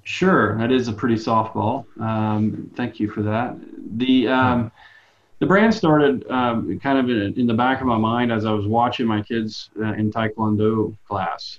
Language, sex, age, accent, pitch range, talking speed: English, male, 30-49, American, 110-130 Hz, 185 wpm